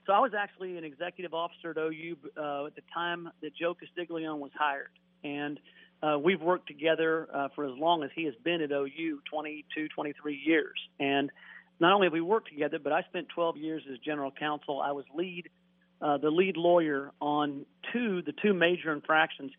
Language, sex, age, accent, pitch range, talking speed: English, male, 40-59, American, 140-165 Hz, 195 wpm